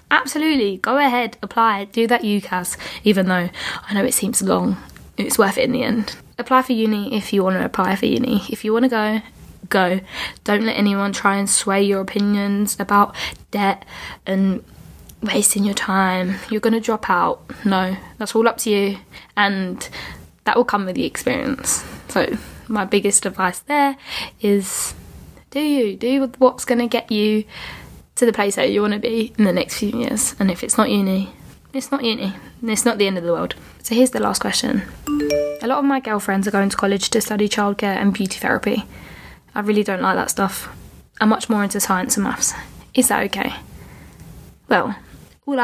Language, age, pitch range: English, 10-29, 195-235 Hz